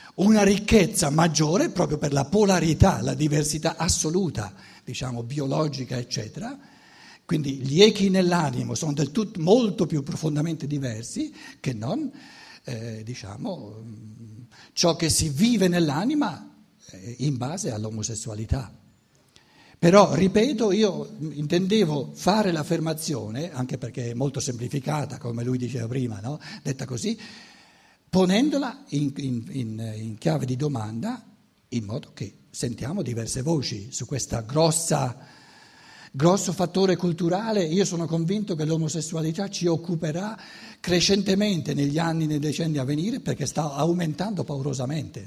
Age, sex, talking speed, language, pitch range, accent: 60-79, male, 120 wpm, Italian, 130-185 Hz, native